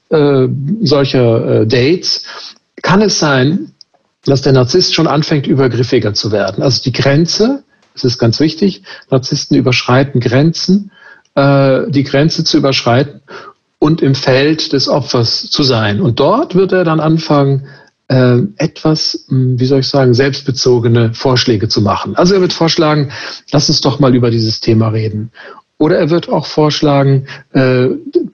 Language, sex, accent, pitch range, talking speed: German, male, German, 130-160 Hz, 150 wpm